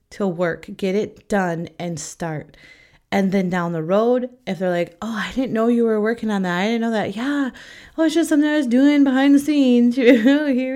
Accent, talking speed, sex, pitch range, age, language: American, 225 wpm, female, 170-235 Hz, 30-49, English